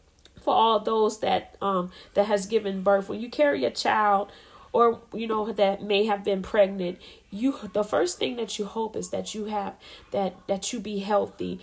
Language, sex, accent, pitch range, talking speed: English, female, American, 195-225 Hz, 195 wpm